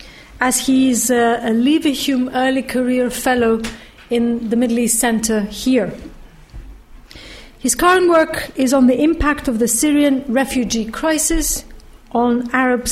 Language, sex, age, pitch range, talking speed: English, female, 50-69, 235-290 Hz, 135 wpm